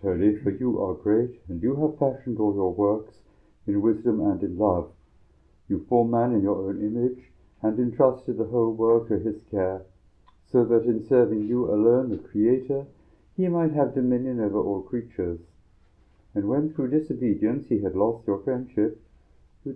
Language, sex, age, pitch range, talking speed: English, male, 60-79, 100-140 Hz, 175 wpm